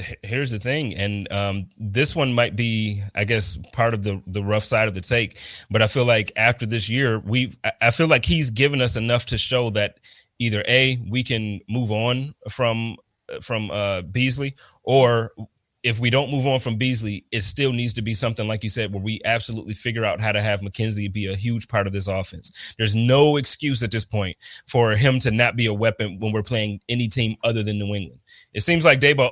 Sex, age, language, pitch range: male, 30-49, English, 105-130 Hz